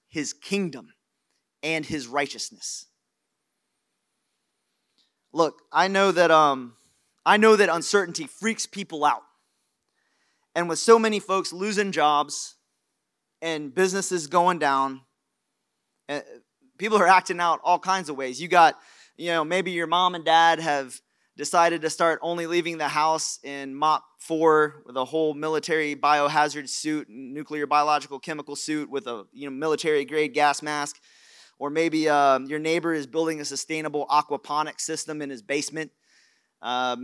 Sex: male